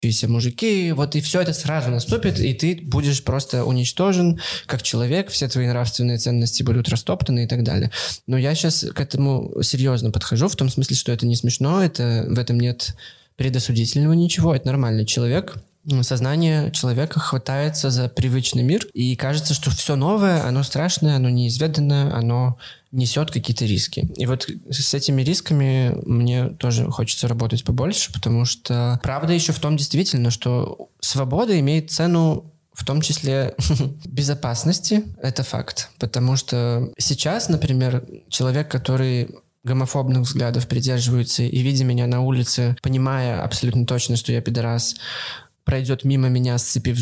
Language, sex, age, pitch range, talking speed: Russian, male, 20-39, 120-145 Hz, 150 wpm